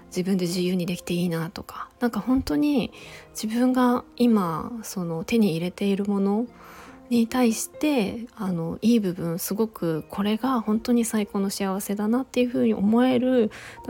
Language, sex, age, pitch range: Japanese, female, 20-39, 195-245 Hz